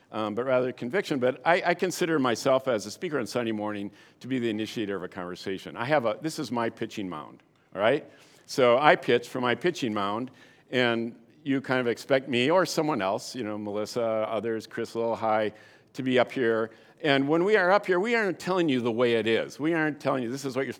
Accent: American